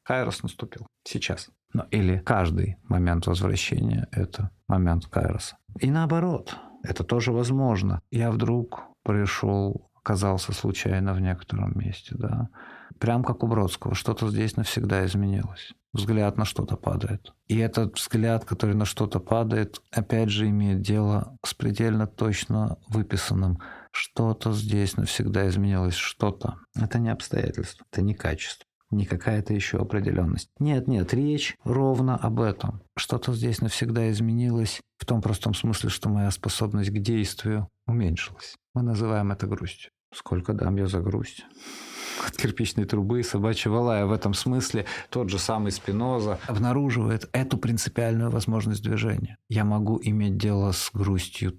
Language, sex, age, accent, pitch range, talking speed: Russian, male, 50-69, native, 100-115 Hz, 135 wpm